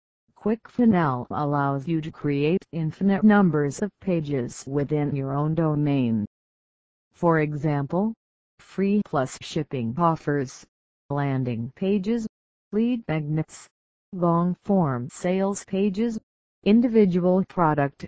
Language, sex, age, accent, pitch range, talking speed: English, female, 40-59, American, 145-195 Hz, 95 wpm